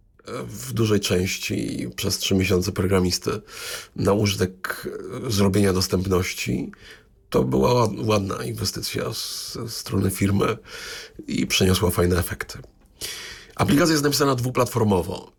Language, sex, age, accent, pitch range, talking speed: Polish, male, 40-59, native, 90-100 Hz, 100 wpm